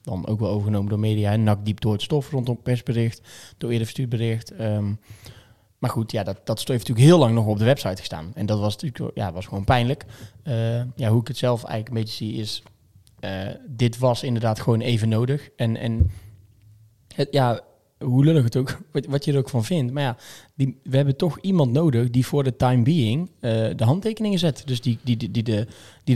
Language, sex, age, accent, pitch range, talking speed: Dutch, male, 20-39, Dutch, 110-135 Hz, 220 wpm